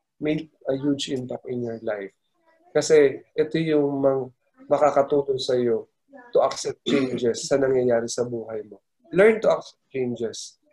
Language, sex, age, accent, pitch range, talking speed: Filipino, male, 20-39, native, 125-205 Hz, 135 wpm